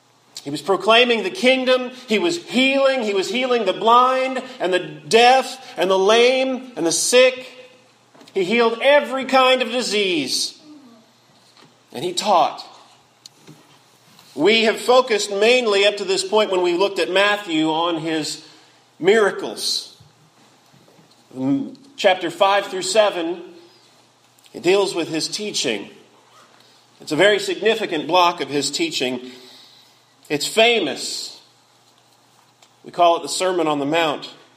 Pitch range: 190-260 Hz